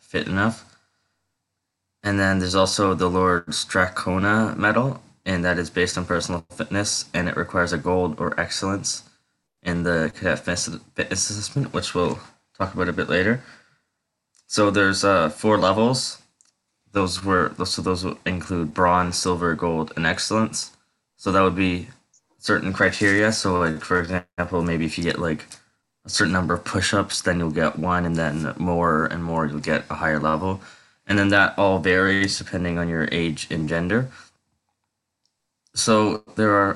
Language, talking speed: English, 160 wpm